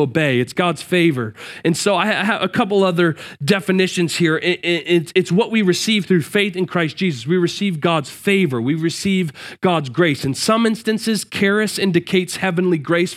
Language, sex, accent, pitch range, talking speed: English, male, American, 155-190 Hz, 170 wpm